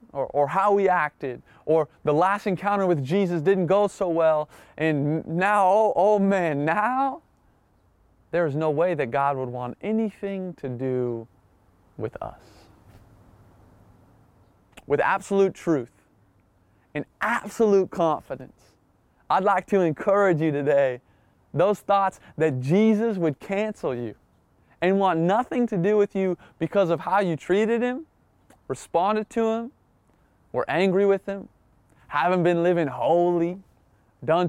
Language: English